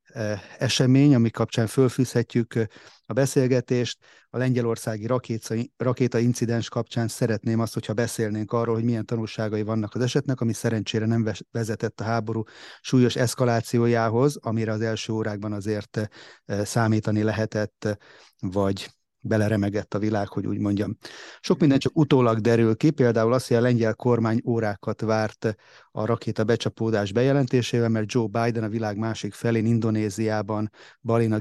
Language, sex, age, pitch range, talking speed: Hungarian, male, 30-49, 110-120 Hz, 135 wpm